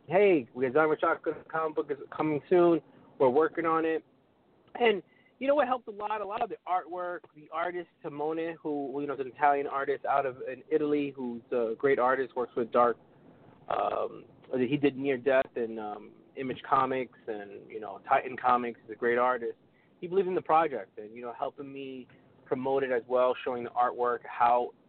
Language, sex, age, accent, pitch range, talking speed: English, male, 30-49, American, 125-160 Hz, 195 wpm